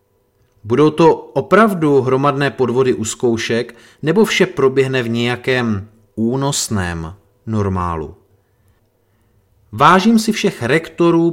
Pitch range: 100-145 Hz